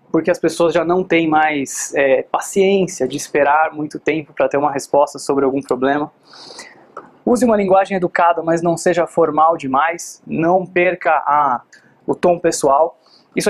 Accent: Brazilian